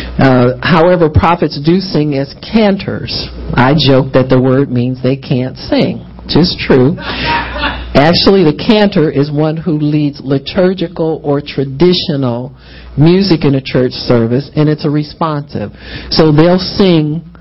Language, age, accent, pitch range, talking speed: English, 50-69, American, 125-160 Hz, 140 wpm